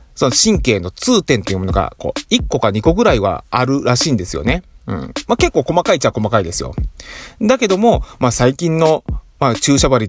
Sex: male